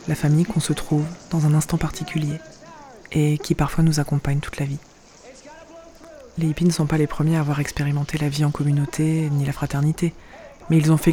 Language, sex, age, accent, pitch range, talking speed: French, female, 20-39, French, 150-170 Hz, 205 wpm